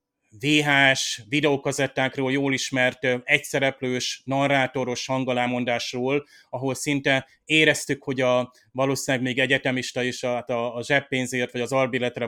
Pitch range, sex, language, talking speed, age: 125-140 Hz, male, Hungarian, 110 wpm, 30-49